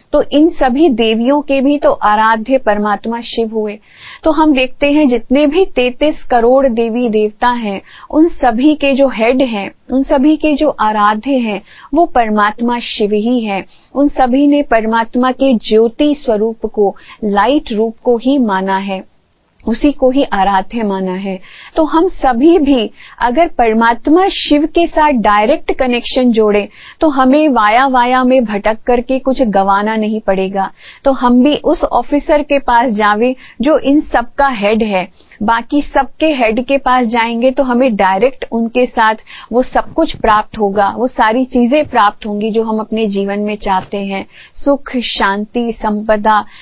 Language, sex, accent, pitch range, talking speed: Hindi, female, native, 220-280 Hz, 165 wpm